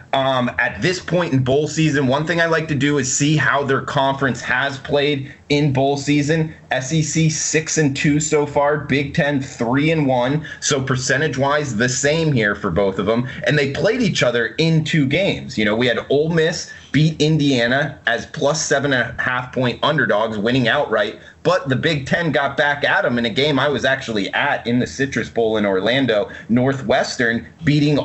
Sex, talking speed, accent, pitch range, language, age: male, 200 wpm, American, 130-150 Hz, English, 30-49